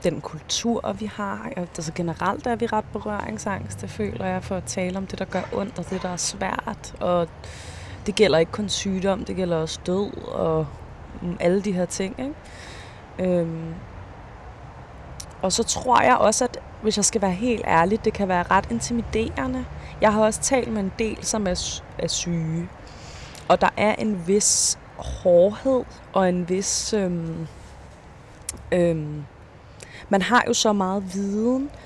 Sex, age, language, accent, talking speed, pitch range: female, 20-39, Danish, native, 165 wpm, 140-200 Hz